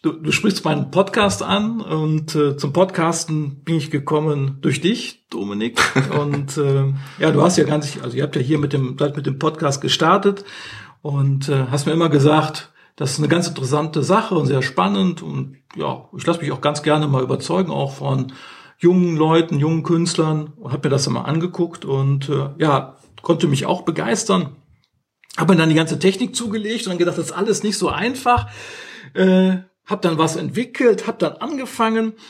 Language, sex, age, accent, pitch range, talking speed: German, male, 50-69, German, 145-180 Hz, 190 wpm